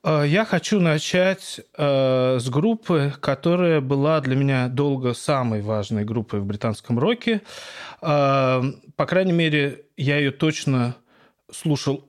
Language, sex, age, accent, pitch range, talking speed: Russian, male, 30-49, native, 125-175 Hz, 115 wpm